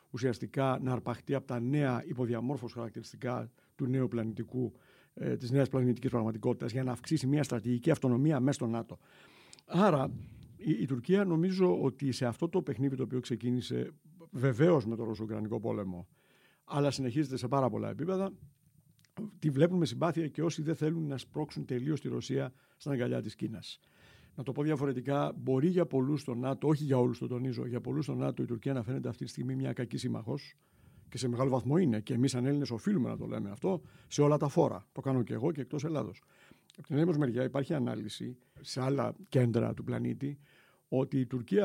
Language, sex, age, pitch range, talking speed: Greek, male, 60-79, 125-150 Hz, 185 wpm